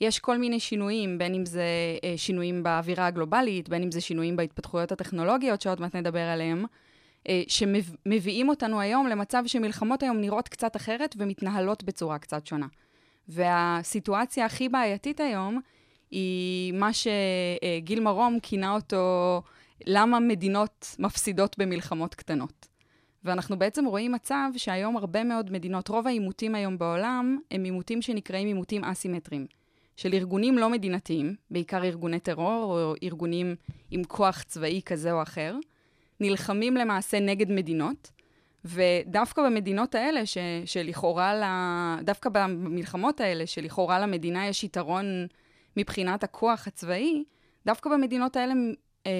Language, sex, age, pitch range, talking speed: Hebrew, female, 20-39, 175-225 Hz, 125 wpm